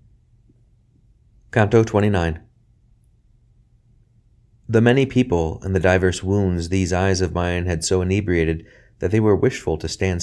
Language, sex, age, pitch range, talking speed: English, male, 30-49, 95-120 Hz, 135 wpm